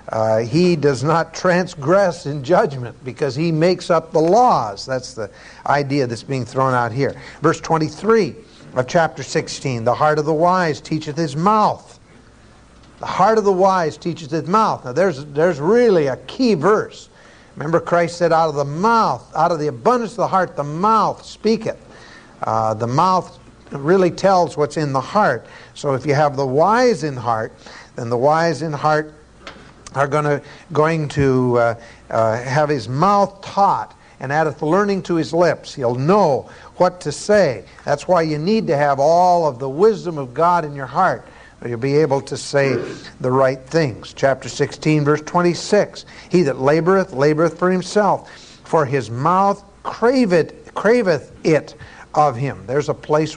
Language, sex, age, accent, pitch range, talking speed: English, male, 60-79, American, 135-180 Hz, 175 wpm